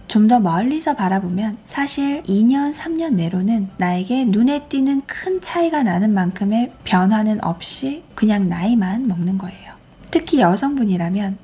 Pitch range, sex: 195-255 Hz, female